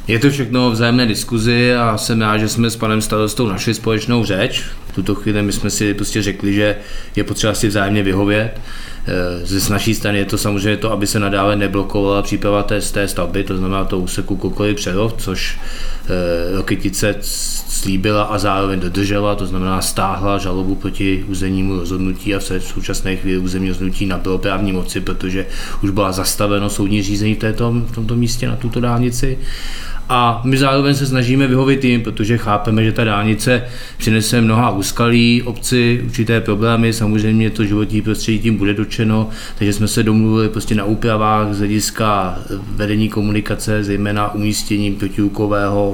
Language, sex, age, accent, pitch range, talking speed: Czech, male, 20-39, native, 95-110 Hz, 165 wpm